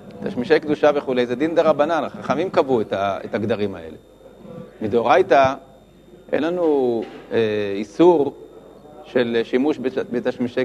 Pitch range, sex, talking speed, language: 125-170 Hz, male, 105 wpm, Hebrew